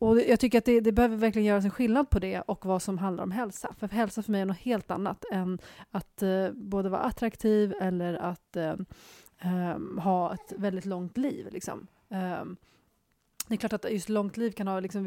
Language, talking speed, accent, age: Swedish, 195 wpm, native, 30-49